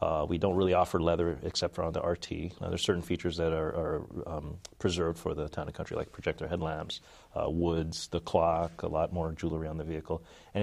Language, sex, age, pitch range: English, male, 30-49, 80-90 Hz